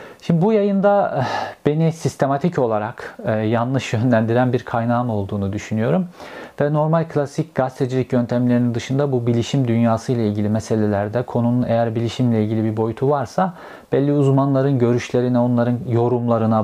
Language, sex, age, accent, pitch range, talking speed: Turkish, male, 50-69, native, 115-145 Hz, 125 wpm